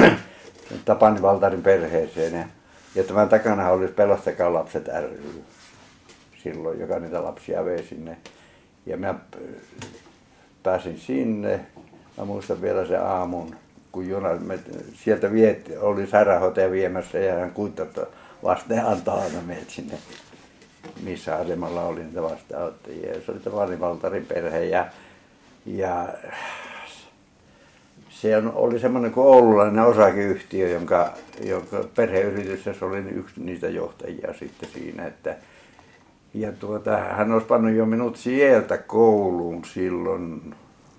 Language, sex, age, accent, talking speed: Finnish, male, 60-79, native, 115 wpm